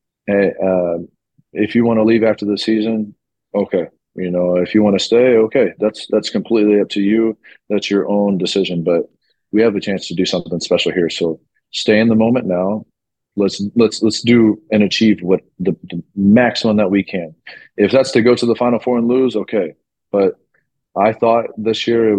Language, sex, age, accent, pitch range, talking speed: English, male, 30-49, American, 95-110 Hz, 205 wpm